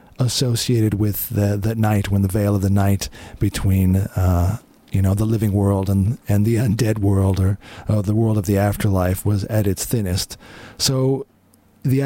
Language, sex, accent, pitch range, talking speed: English, male, American, 95-115 Hz, 180 wpm